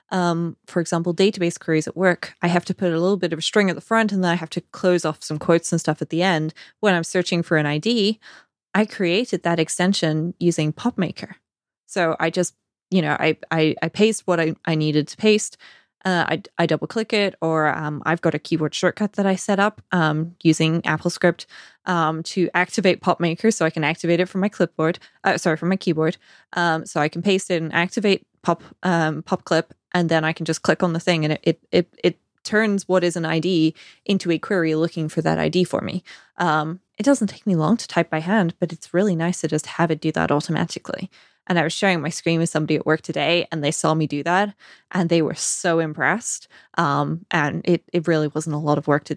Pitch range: 160-185 Hz